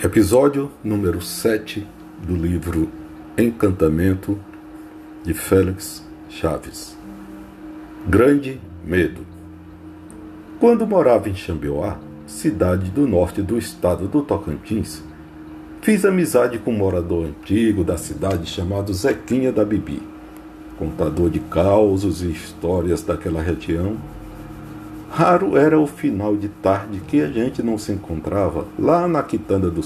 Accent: Brazilian